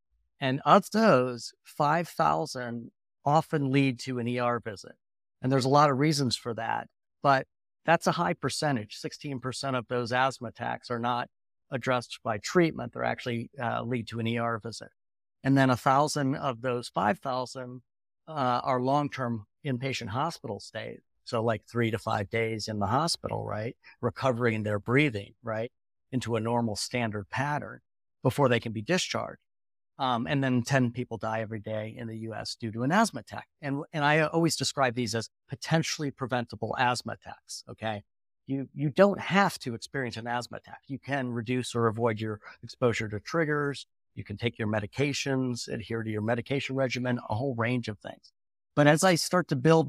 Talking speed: 175 wpm